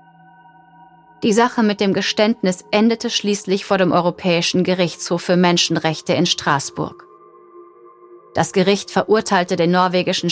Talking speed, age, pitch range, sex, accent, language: 115 wpm, 30-49, 170-210 Hz, female, German, German